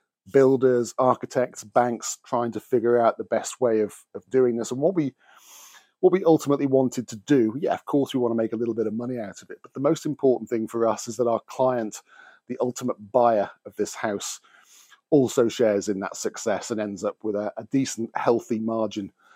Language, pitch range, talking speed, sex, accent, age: English, 110-130 Hz, 215 wpm, male, British, 40-59